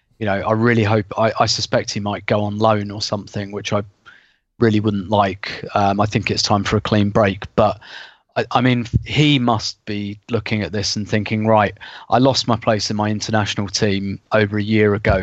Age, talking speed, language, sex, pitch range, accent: 20-39, 215 wpm, English, male, 105-120 Hz, British